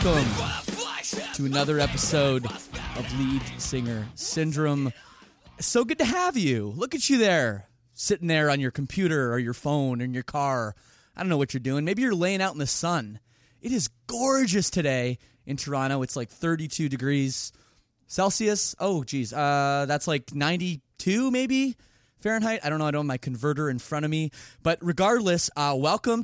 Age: 20-39